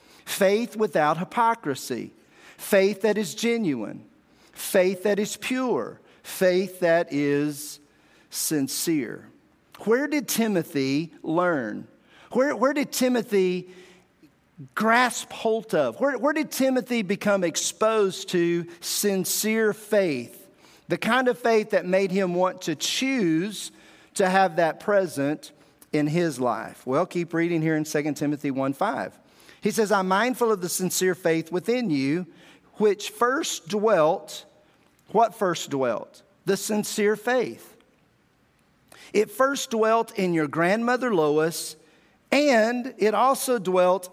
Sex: male